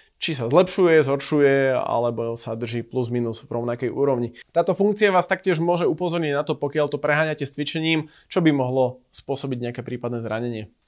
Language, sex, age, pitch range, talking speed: Slovak, male, 20-39, 130-170 Hz, 175 wpm